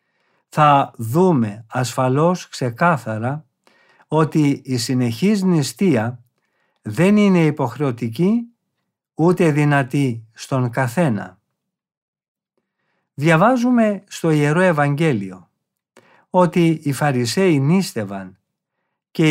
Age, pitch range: 50-69, 135-175 Hz